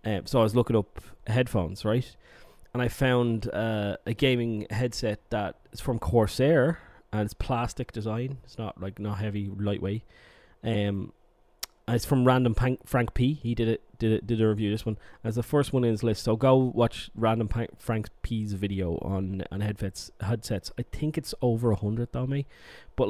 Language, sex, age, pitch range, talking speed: English, male, 20-39, 105-120 Hz, 190 wpm